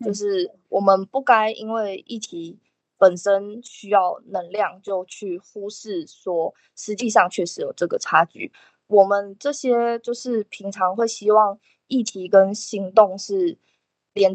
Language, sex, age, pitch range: Chinese, female, 20-39, 185-230 Hz